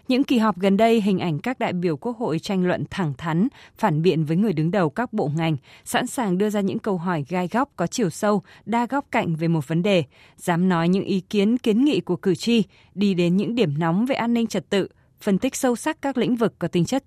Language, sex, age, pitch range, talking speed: Vietnamese, female, 20-39, 170-225 Hz, 260 wpm